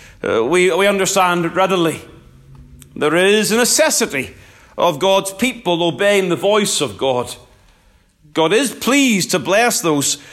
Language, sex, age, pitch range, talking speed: English, male, 40-59, 170-235 Hz, 135 wpm